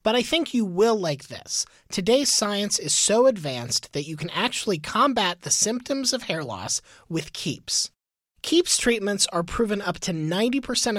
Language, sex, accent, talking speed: English, male, American, 170 wpm